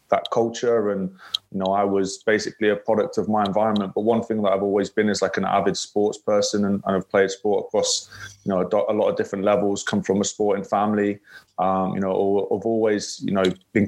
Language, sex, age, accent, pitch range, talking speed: English, male, 20-39, British, 100-110 Hz, 225 wpm